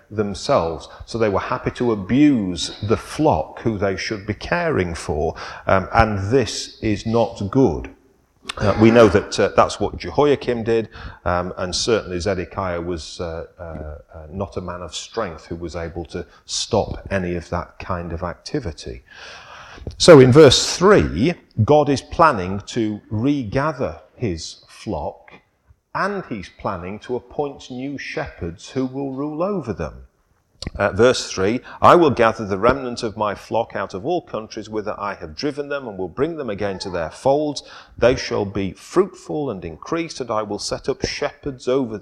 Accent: British